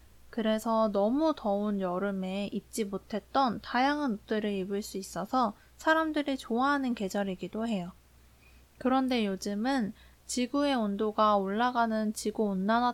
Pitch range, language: 195-255 Hz, Korean